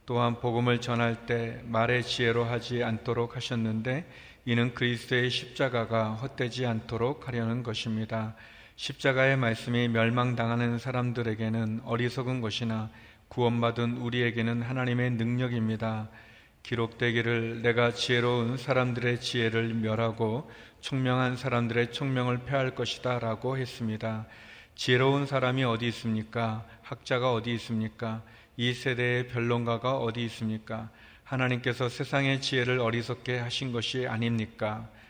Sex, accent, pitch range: male, native, 115-125 Hz